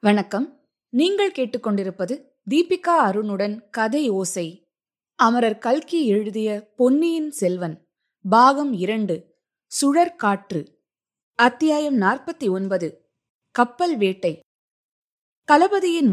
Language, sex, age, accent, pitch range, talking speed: Tamil, female, 20-39, native, 180-250 Hz, 75 wpm